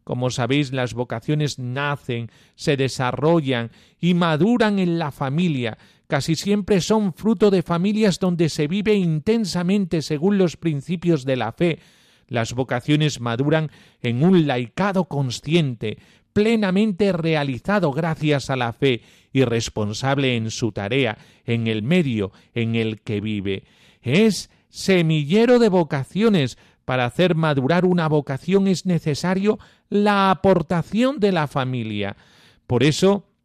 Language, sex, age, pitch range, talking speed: Spanish, male, 40-59, 125-175 Hz, 125 wpm